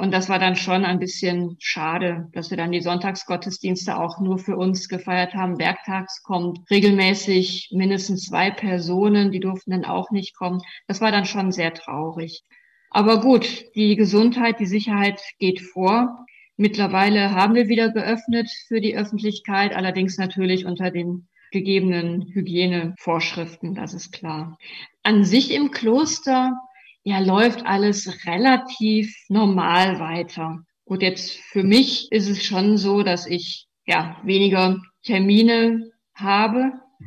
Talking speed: 140 wpm